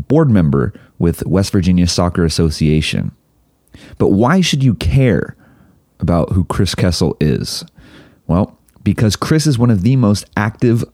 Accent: American